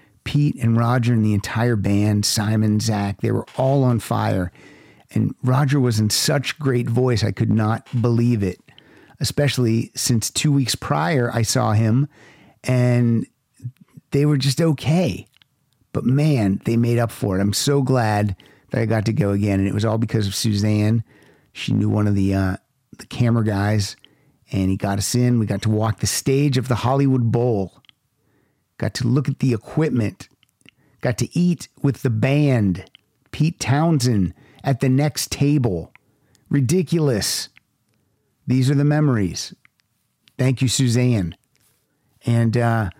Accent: American